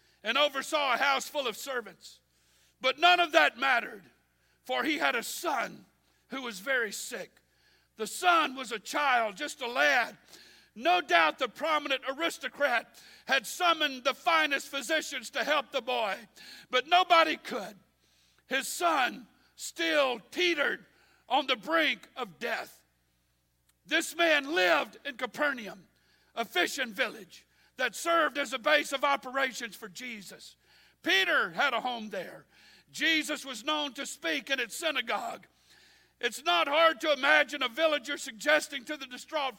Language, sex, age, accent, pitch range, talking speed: English, male, 60-79, American, 255-320 Hz, 145 wpm